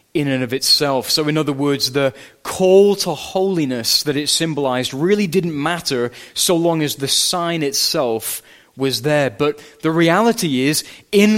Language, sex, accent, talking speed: English, male, British, 165 wpm